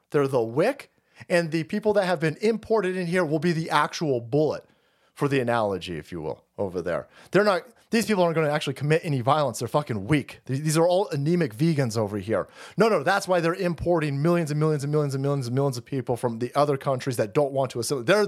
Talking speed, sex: 235 wpm, male